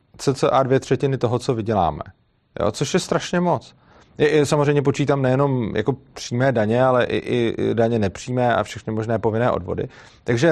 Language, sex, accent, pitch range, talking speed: Czech, male, native, 120-145 Hz, 150 wpm